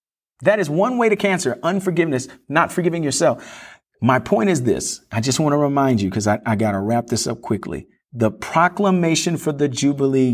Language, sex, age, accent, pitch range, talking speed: English, male, 40-59, American, 115-165 Hz, 190 wpm